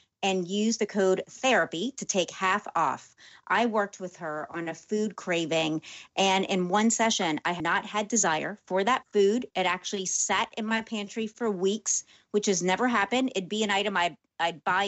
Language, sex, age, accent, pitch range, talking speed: English, female, 30-49, American, 180-220 Hz, 195 wpm